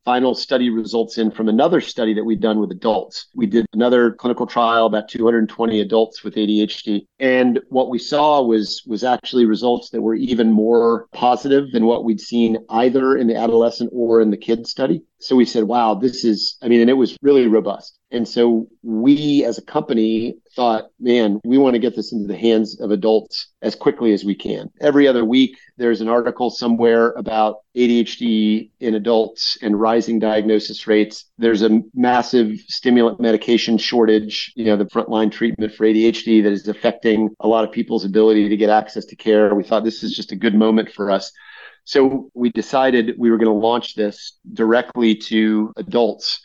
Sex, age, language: male, 40-59, English